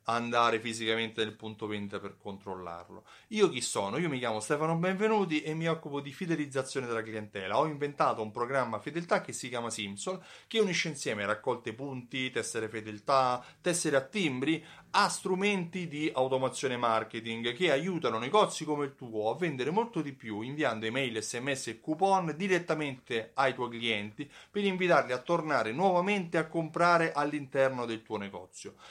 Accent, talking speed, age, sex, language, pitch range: native, 160 wpm, 30-49, male, Italian, 115-165 Hz